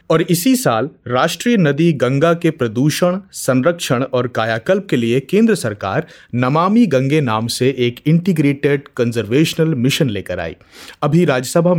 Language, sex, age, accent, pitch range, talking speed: Hindi, male, 30-49, native, 125-180 Hz, 140 wpm